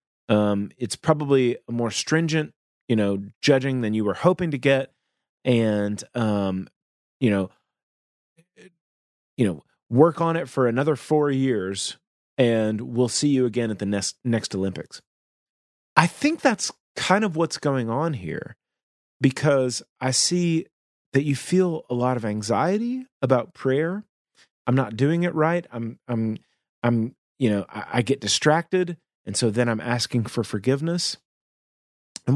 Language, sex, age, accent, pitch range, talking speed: English, male, 30-49, American, 110-155 Hz, 150 wpm